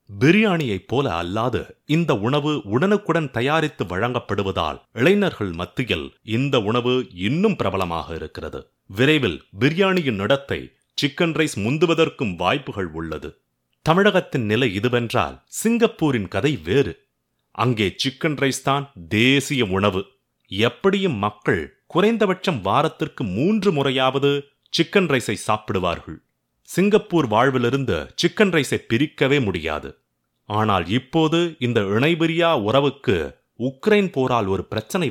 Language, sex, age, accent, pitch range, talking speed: Tamil, male, 30-49, native, 105-165 Hz, 100 wpm